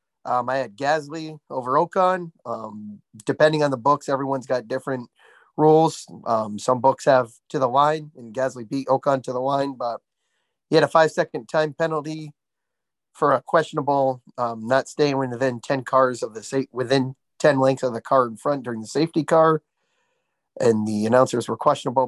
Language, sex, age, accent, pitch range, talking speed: English, male, 30-49, American, 120-150 Hz, 175 wpm